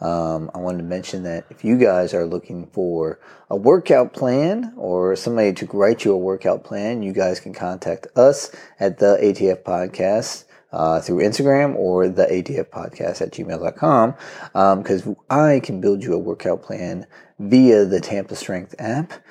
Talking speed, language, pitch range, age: 170 wpm, English, 90-120 Hz, 30-49